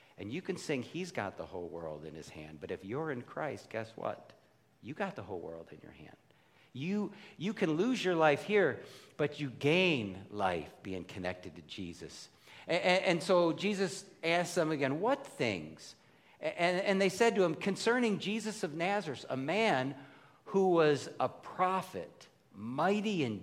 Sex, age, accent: male, 50-69, American